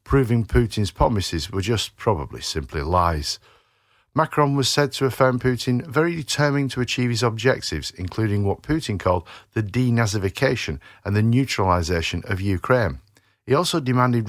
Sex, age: male, 50-69